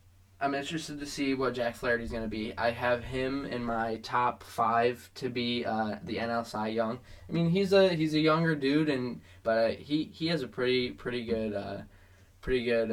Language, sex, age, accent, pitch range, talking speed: English, male, 10-29, American, 105-125 Hz, 200 wpm